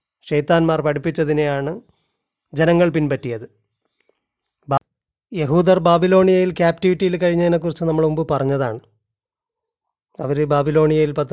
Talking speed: 80 wpm